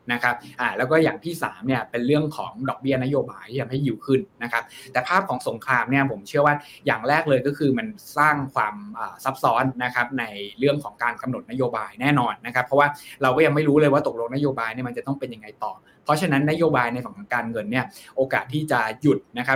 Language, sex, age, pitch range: Thai, male, 20-39, 120-145 Hz